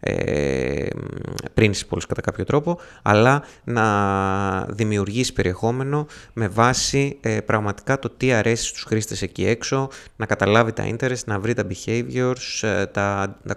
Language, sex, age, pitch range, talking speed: Greek, male, 20-39, 95-120 Hz, 135 wpm